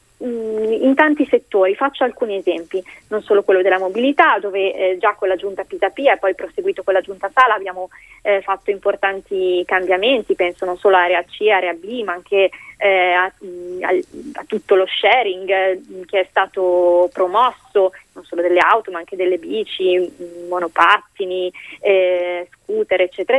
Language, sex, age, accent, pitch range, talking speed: Italian, female, 20-39, native, 190-270 Hz, 160 wpm